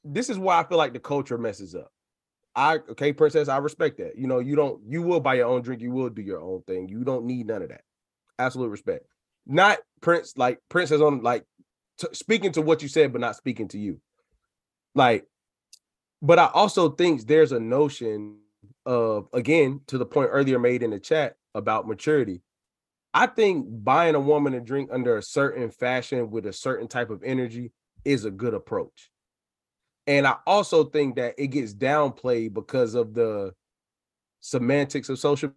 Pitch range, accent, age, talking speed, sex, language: 120-155 Hz, American, 20-39, 190 wpm, male, English